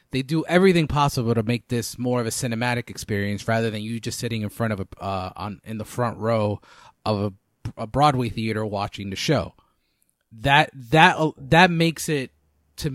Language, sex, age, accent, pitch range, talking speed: English, male, 30-49, American, 110-145 Hz, 190 wpm